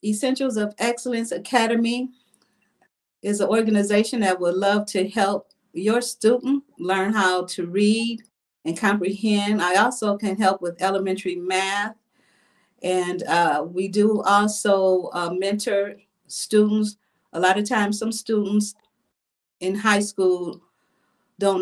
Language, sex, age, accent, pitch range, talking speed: English, female, 40-59, American, 180-215 Hz, 125 wpm